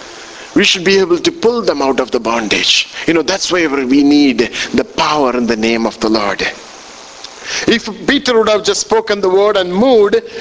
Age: 50-69